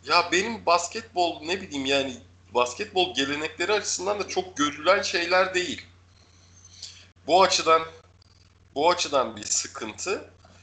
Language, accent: Turkish, native